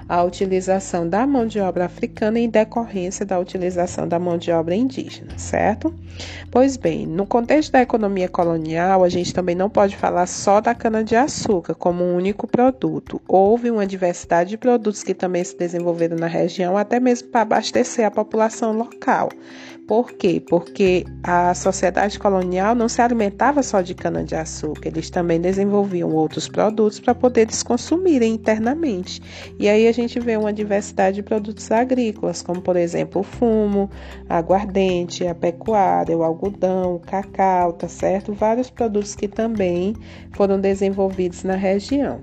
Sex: female